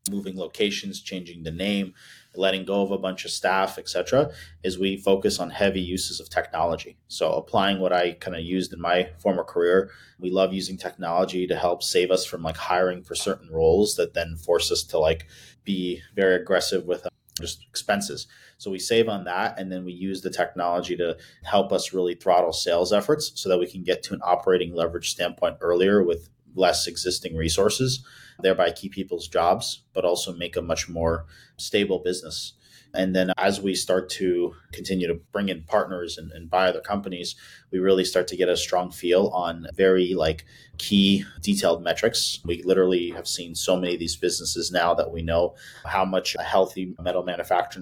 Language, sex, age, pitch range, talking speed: English, male, 30-49, 85-95 Hz, 190 wpm